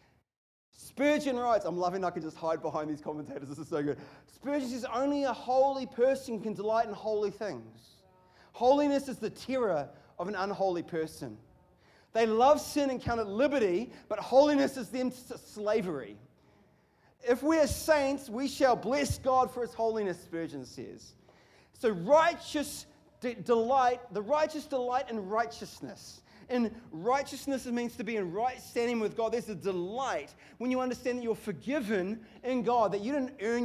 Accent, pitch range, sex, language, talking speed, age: Australian, 185-255 Hz, male, English, 170 wpm, 30-49